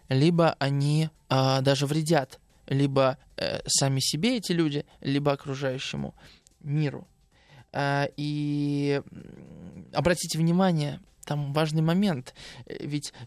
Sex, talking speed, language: male, 90 wpm, Russian